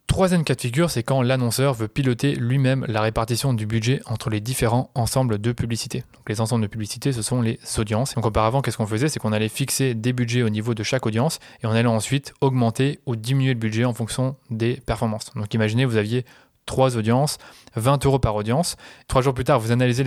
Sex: male